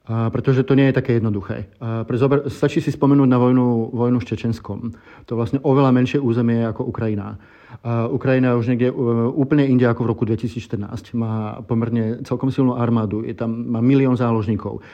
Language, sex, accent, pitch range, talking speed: Czech, male, native, 115-130 Hz, 165 wpm